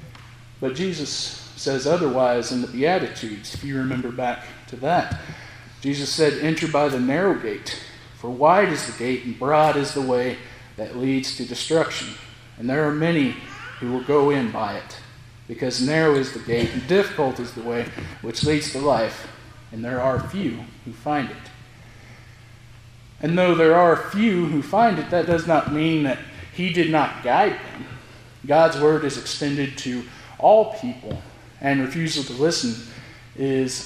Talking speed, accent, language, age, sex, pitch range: 170 wpm, American, English, 40-59, male, 120-150 Hz